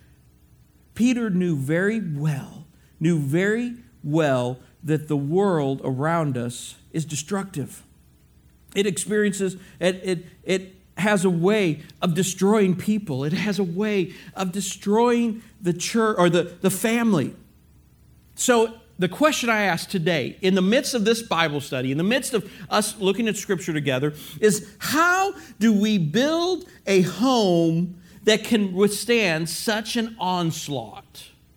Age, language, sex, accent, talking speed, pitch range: 50-69, English, male, American, 135 wpm, 170-230 Hz